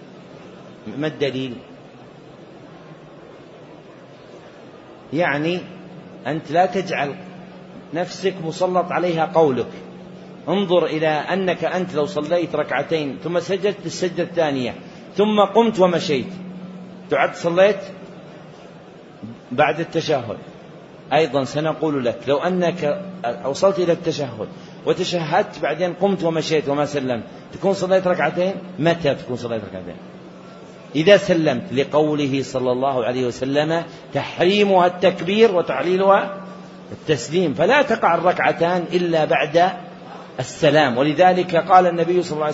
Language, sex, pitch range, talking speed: Arabic, male, 145-185 Hz, 100 wpm